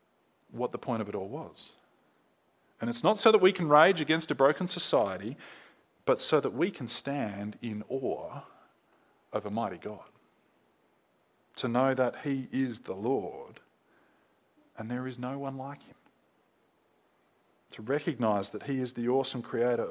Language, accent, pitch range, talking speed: English, Australian, 120-165 Hz, 160 wpm